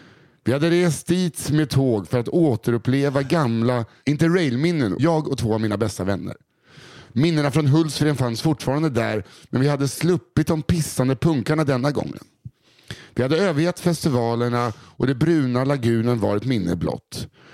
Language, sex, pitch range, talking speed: English, male, 115-155 Hz, 150 wpm